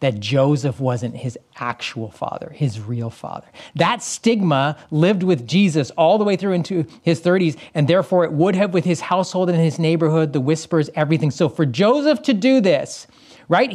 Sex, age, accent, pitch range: male, 30-49, American, 130-185 Hz